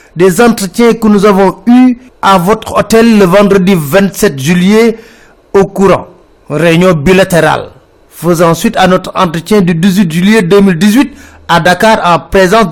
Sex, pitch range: male, 180-225 Hz